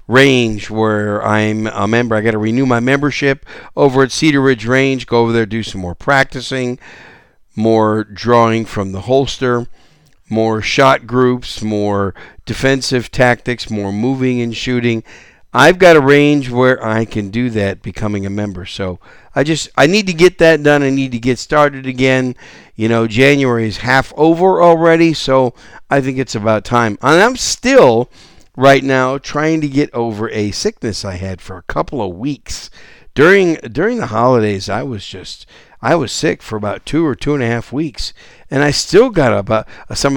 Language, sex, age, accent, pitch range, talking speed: English, male, 50-69, American, 110-145 Hz, 180 wpm